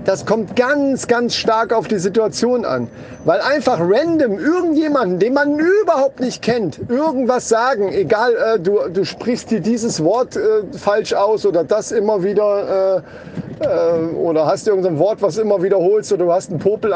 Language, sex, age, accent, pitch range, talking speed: German, male, 40-59, German, 185-240 Hz, 180 wpm